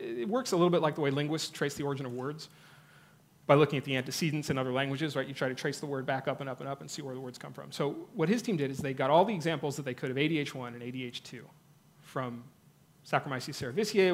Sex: male